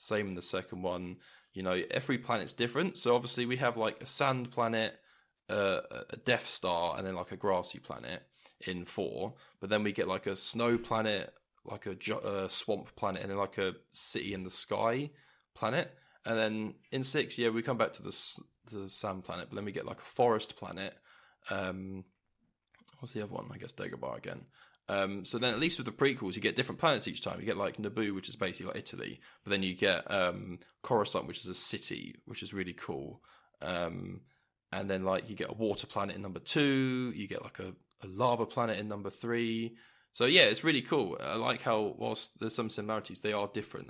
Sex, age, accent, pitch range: male, 10-29, British, 95-120 Hz